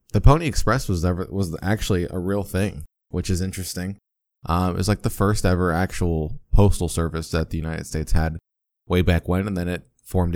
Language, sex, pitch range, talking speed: English, male, 85-115 Hz, 205 wpm